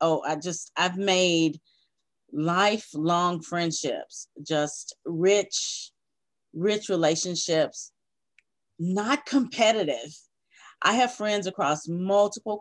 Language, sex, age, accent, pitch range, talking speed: English, female, 30-49, American, 160-205 Hz, 80 wpm